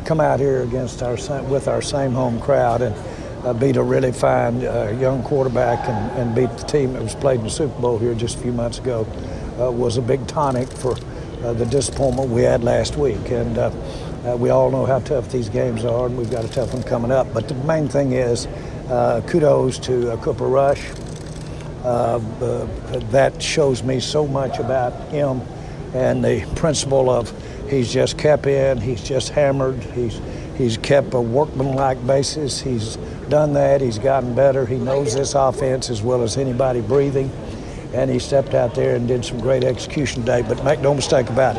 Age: 60-79